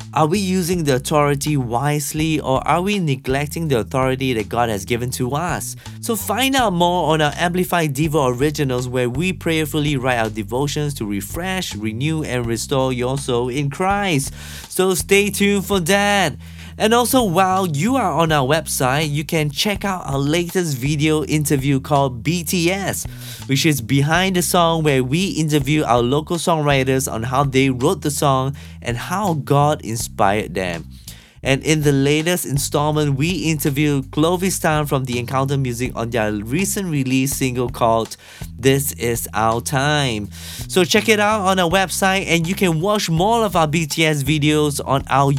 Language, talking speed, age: English, 170 wpm, 20-39